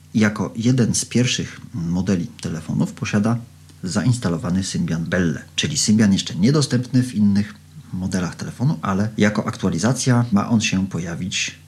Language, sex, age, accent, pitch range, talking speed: Polish, male, 40-59, native, 95-125 Hz, 130 wpm